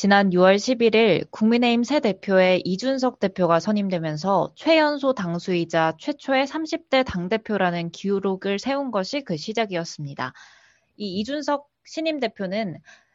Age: 20-39